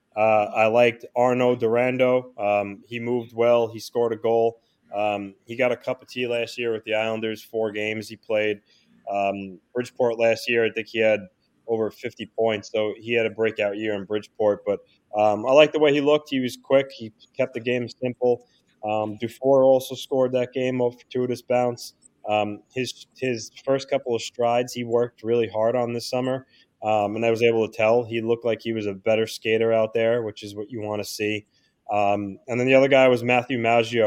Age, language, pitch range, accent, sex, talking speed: 20-39, English, 110-125 Hz, American, male, 210 wpm